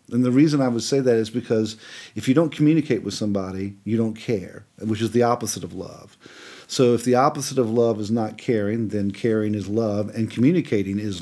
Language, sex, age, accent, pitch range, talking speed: English, male, 40-59, American, 110-145 Hz, 215 wpm